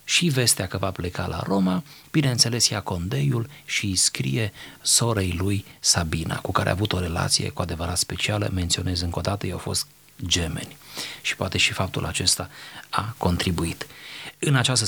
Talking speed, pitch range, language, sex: 165 wpm, 95-135 Hz, Romanian, male